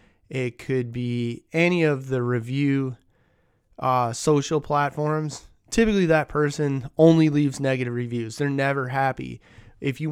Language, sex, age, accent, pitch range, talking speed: English, male, 30-49, American, 125-160 Hz, 130 wpm